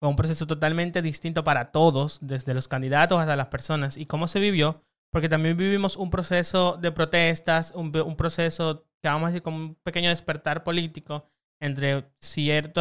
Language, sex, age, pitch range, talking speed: Spanish, male, 30-49, 150-180 Hz, 180 wpm